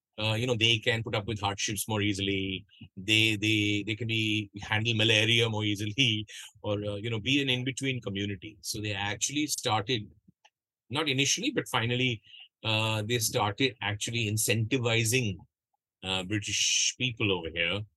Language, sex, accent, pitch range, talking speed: Bengali, male, native, 105-135 Hz, 155 wpm